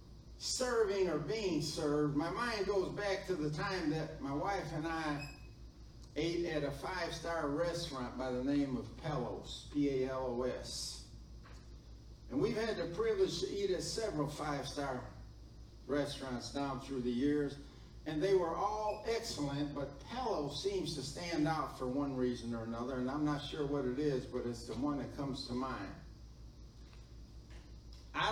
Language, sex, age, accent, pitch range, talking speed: English, male, 50-69, American, 130-170 Hz, 155 wpm